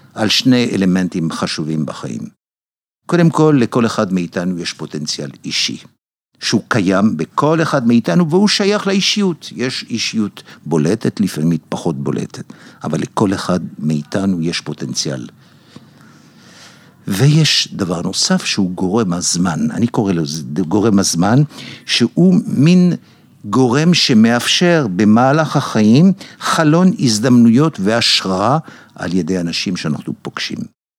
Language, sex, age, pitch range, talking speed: Hebrew, male, 60-79, 90-145 Hz, 110 wpm